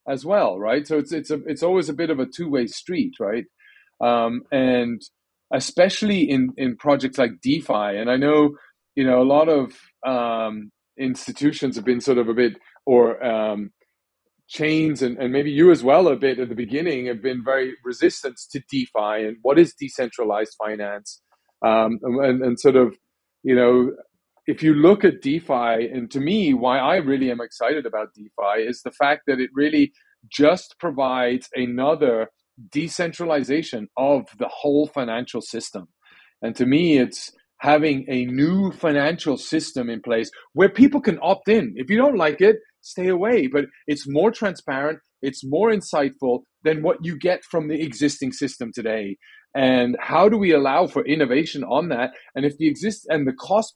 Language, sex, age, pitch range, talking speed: English, male, 30-49, 125-165 Hz, 175 wpm